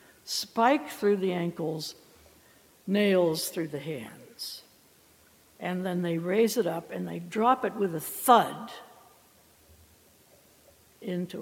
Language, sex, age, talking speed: English, female, 60-79, 115 wpm